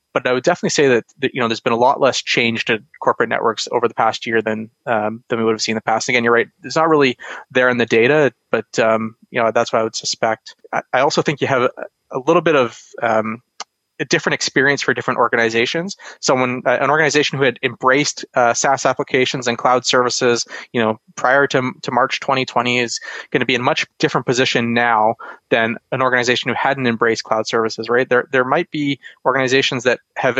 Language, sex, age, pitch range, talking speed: English, male, 20-39, 115-130 Hz, 225 wpm